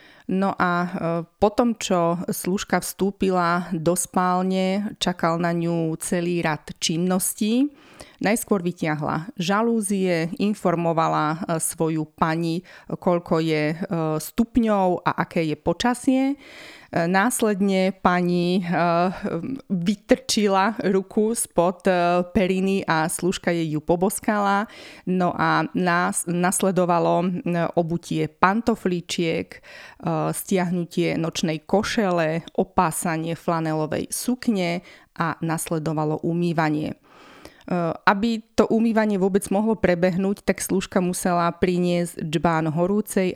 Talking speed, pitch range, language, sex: 90 wpm, 170-200 Hz, Slovak, female